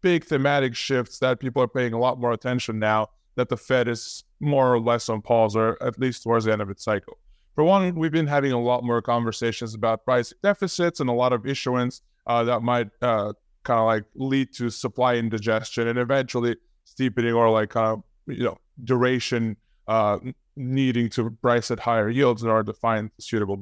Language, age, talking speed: English, 20-39, 200 wpm